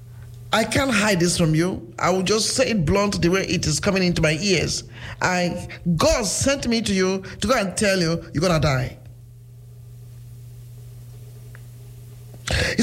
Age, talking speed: 50-69, 165 wpm